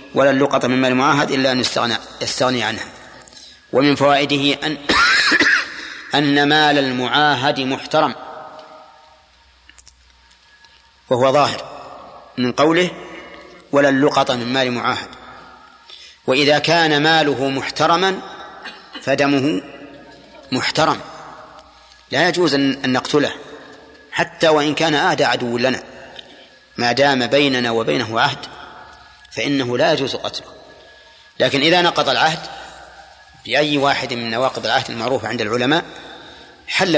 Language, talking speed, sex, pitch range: Arabic, 100 wpm, male, 130-150 Hz